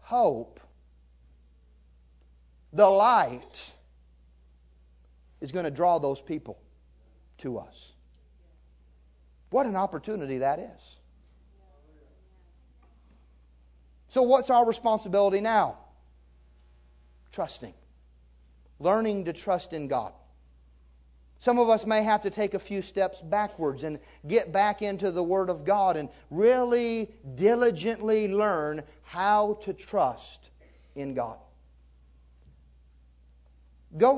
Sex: male